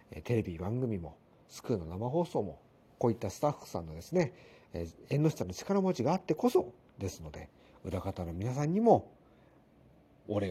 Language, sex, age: Japanese, male, 50-69